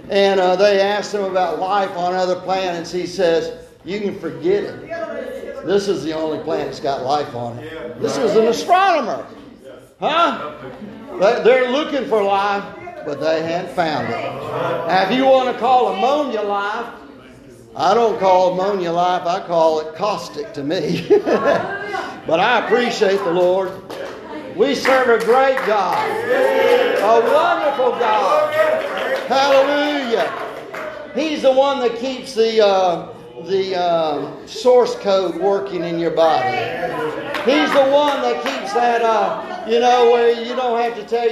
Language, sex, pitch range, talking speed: English, male, 180-260 Hz, 150 wpm